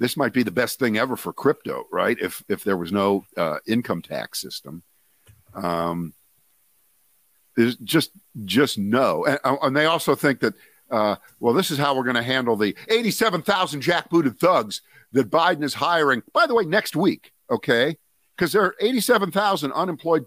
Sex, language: male, English